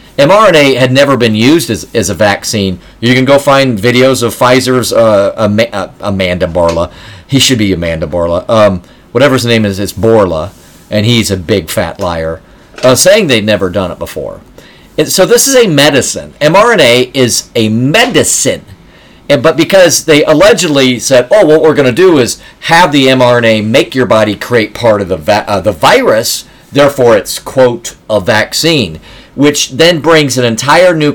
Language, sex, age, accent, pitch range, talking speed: English, male, 40-59, American, 110-145 Hz, 175 wpm